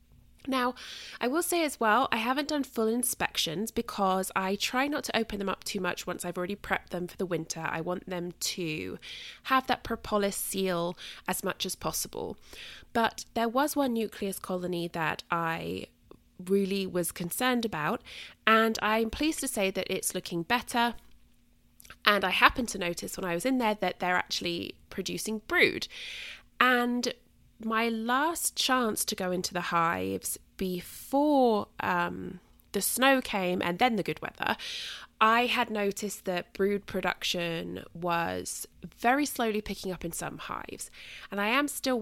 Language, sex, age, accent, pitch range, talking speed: English, female, 20-39, British, 175-240 Hz, 165 wpm